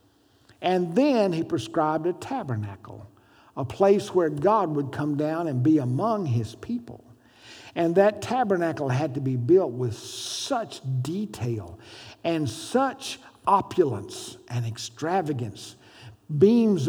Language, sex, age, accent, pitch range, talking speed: English, male, 60-79, American, 125-190 Hz, 120 wpm